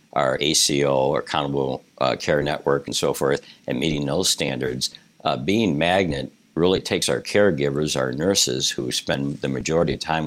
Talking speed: 170 wpm